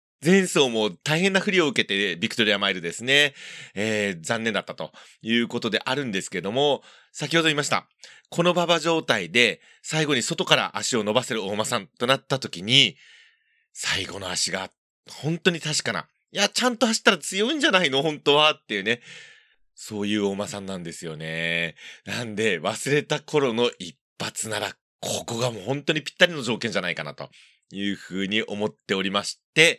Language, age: Japanese, 30-49